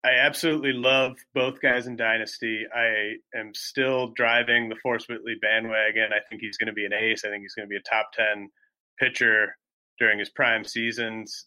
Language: English